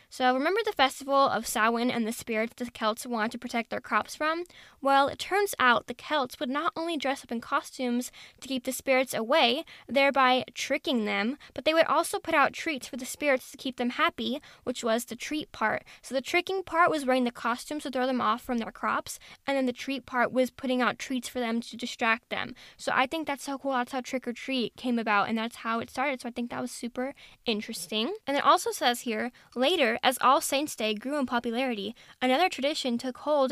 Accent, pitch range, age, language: American, 240-280 Hz, 10-29, English